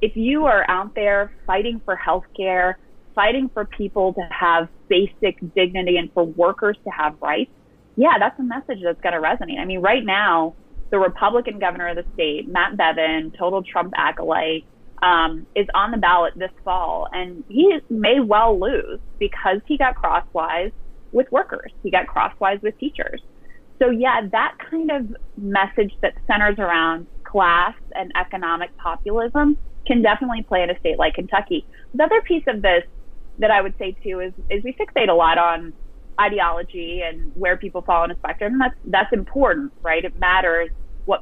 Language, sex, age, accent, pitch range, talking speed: English, female, 20-39, American, 175-240 Hz, 175 wpm